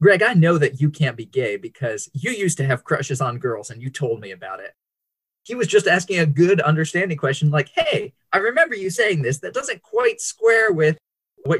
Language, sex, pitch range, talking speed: English, male, 135-180 Hz, 220 wpm